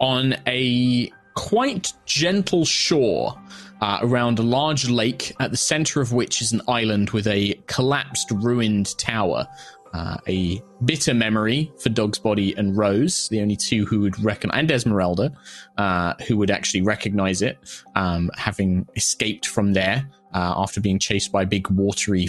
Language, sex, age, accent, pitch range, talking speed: English, male, 20-39, British, 100-125 Hz, 160 wpm